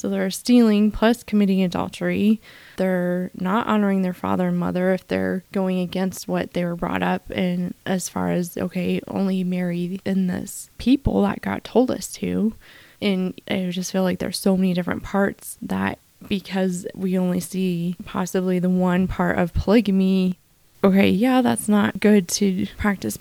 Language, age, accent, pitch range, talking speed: English, 20-39, American, 185-210 Hz, 170 wpm